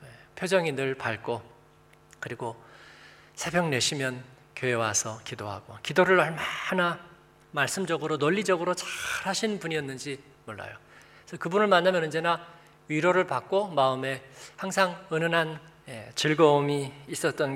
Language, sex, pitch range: Korean, male, 140-185 Hz